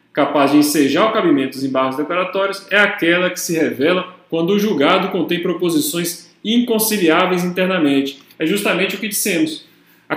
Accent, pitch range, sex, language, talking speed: Brazilian, 150-200 Hz, male, Portuguese, 155 wpm